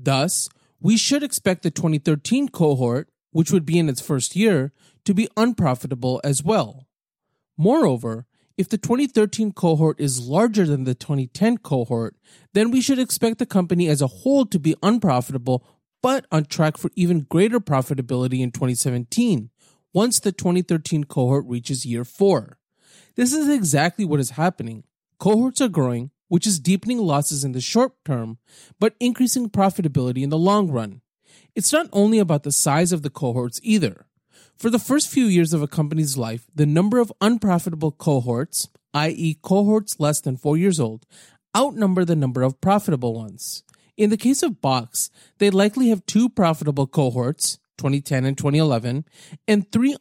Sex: male